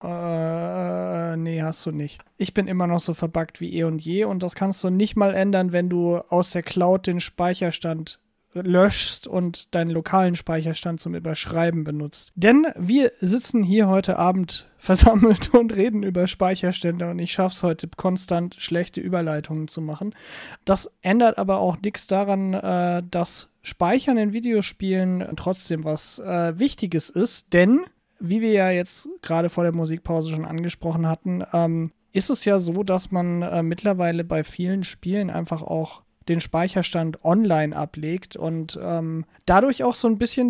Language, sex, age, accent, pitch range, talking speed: English, male, 30-49, German, 170-200 Hz, 160 wpm